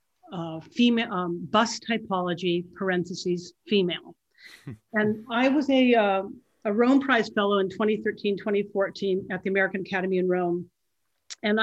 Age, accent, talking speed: 50-69, American, 130 wpm